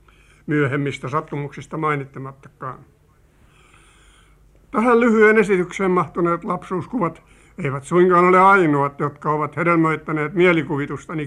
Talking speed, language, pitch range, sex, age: 85 wpm, Finnish, 145-180 Hz, male, 50-69